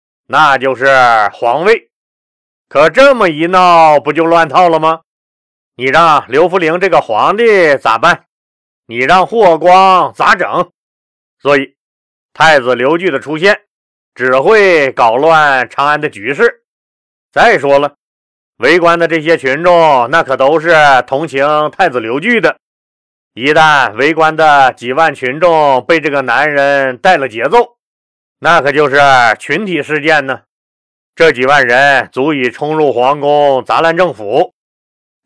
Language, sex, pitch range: Chinese, male, 125-170 Hz